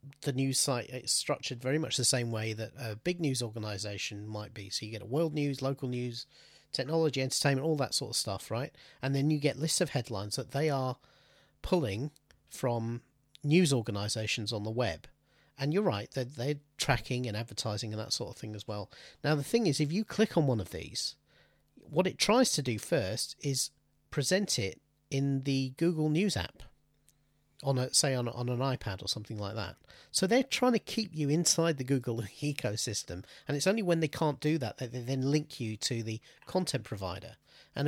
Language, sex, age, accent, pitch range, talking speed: English, male, 40-59, British, 120-150 Hz, 205 wpm